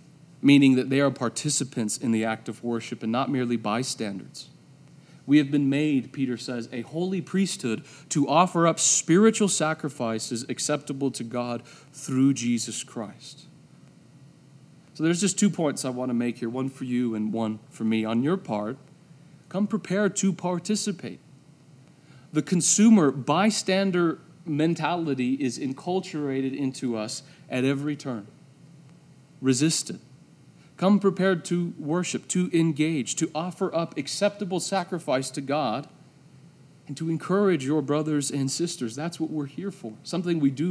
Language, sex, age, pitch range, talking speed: English, male, 40-59, 130-165 Hz, 145 wpm